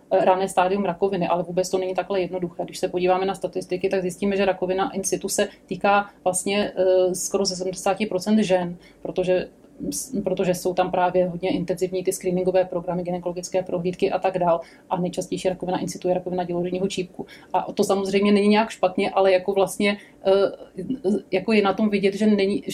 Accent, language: native, Czech